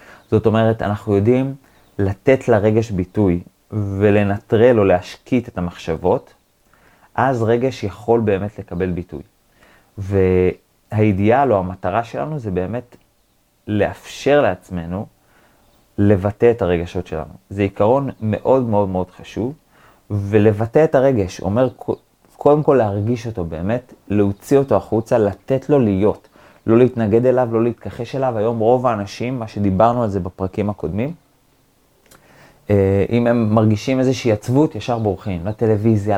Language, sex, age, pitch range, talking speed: Hebrew, male, 30-49, 100-125 Hz, 125 wpm